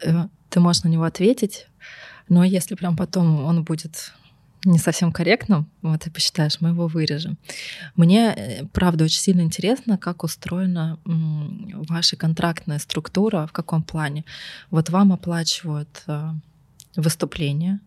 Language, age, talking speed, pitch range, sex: Russian, 20-39, 125 wpm, 150-175 Hz, female